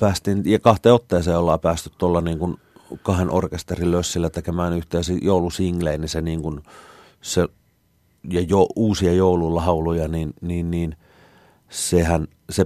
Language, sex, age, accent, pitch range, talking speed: Finnish, male, 30-49, native, 80-90 Hz, 135 wpm